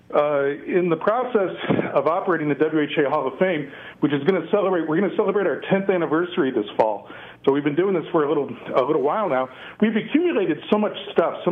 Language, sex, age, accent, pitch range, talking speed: English, male, 40-59, American, 145-185 Hz, 225 wpm